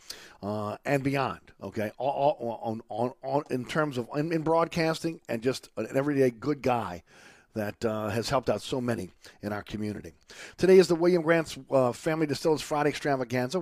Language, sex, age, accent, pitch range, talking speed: English, male, 50-69, American, 115-150 Hz, 190 wpm